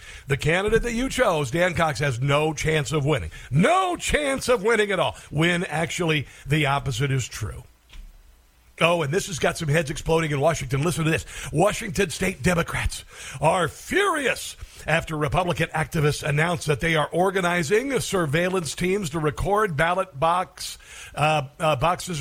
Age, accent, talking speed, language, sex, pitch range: 50-69, American, 160 wpm, English, male, 150-185 Hz